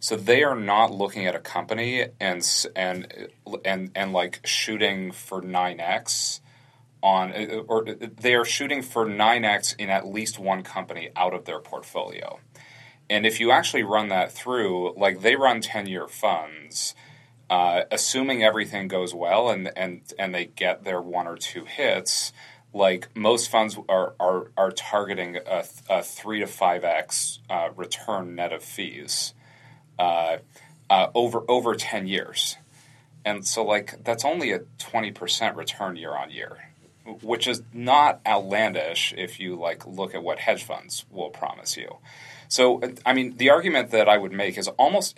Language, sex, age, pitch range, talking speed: English, male, 30-49, 95-125 Hz, 160 wpm